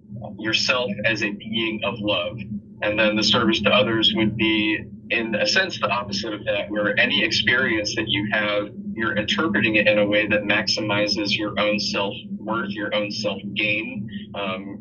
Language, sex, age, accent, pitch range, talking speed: English, male, 30-49, American, 105-110 Hz, 170 wpm